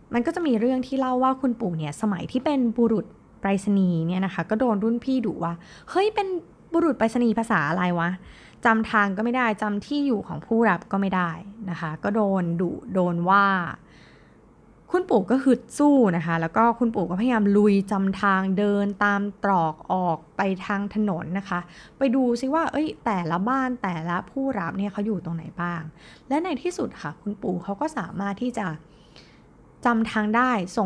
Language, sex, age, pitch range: Thai, female, 20-39, 180-240 Hz